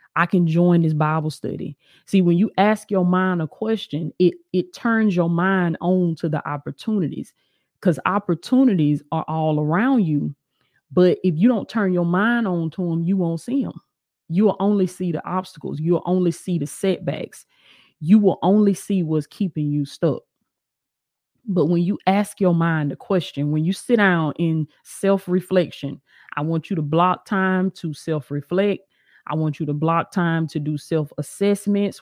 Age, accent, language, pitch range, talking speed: 30-49, American, English, 160-195 Hz, 175 wpm